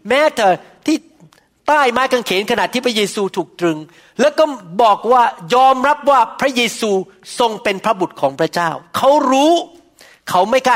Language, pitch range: Thai, 180-260 Hz